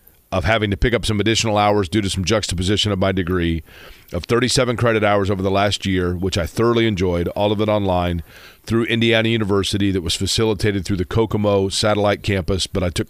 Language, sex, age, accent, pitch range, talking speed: English, male, 40-59, American, 95-110 Hz, 205 wpm